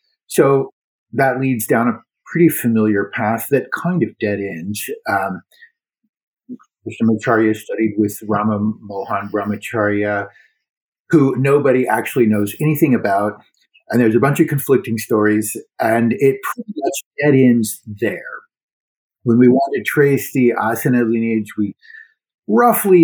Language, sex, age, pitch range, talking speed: English, male, 50-69, 110-150 Hz, 130 wpm